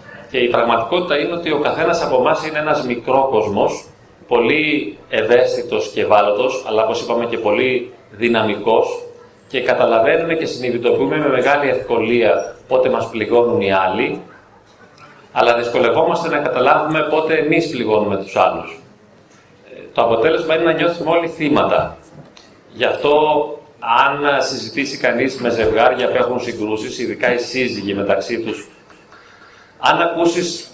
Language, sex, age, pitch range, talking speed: Greek, male, 30-49, 130-180 Hz, 135 wpm